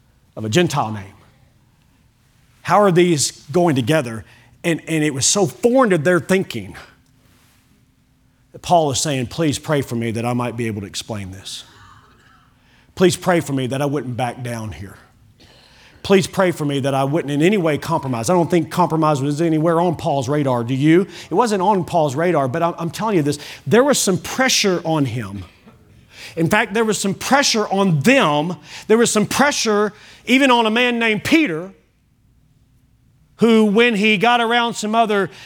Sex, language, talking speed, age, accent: male, English, 185 wpm, 40-59, American